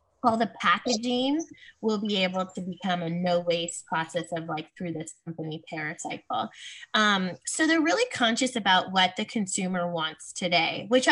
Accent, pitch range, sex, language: American, 180-230 Hz, female, English